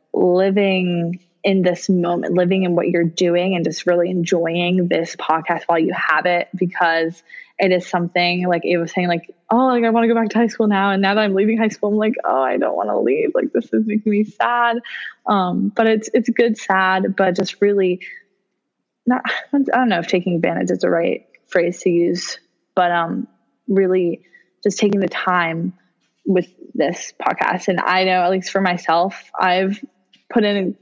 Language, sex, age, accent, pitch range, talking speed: English, female, 20-39, American, 175-205 Hz, 200 wpm